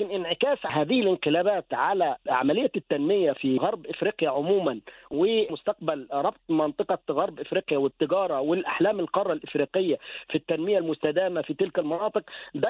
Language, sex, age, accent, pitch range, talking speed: English, male, 50-69, Lebanese, 165-225 Hz, 125 wpm